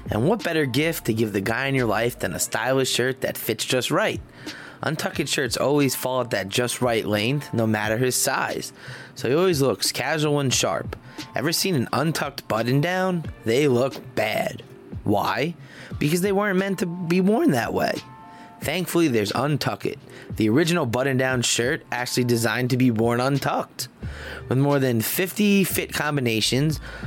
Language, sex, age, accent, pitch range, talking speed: English, male, 20-39, American, 120-155 Hz, 170 wpm